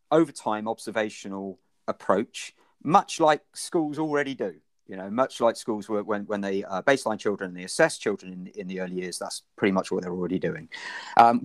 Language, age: English, 40-59